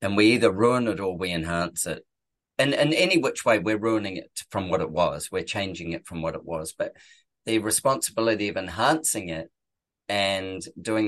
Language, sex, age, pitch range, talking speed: English, male, 30-49, 85-105 Hz, 195 wpm